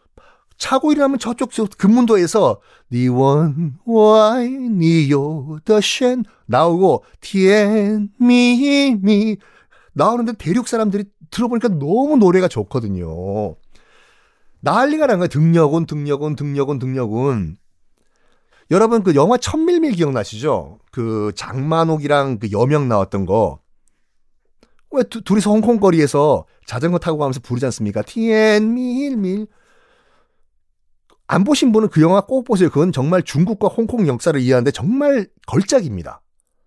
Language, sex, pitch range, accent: Korean, male, 135-220 Hz, native